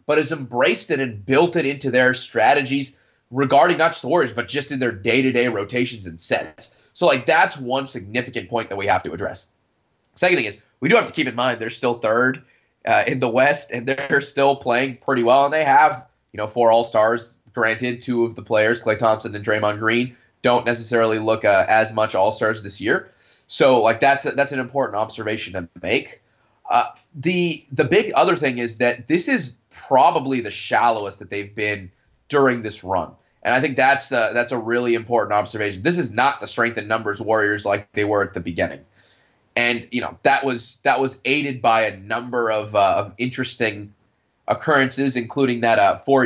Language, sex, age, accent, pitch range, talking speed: English, male, 20-39, American, 110-135 Hz, 200 wpm